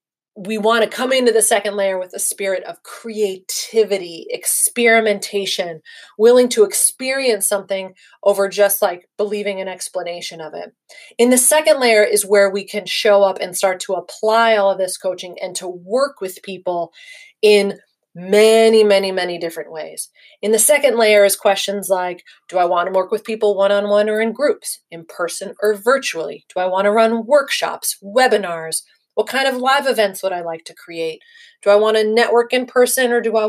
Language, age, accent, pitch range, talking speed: English, 30-49, American, 190-235 Hz, 185 wpm